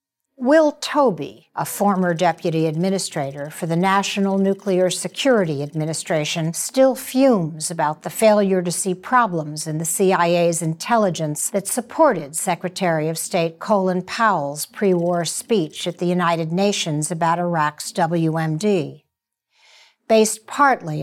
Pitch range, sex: 165-210 Hz, female